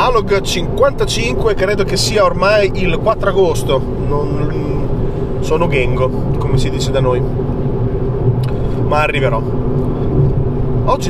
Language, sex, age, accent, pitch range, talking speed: Italian, male, 30-49, native, 130-145 Hz, 110 wpm